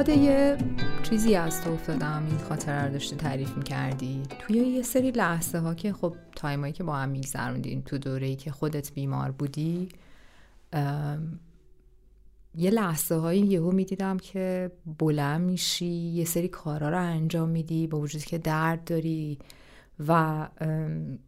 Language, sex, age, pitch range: Persian, female, 30-49, 155-200 Hz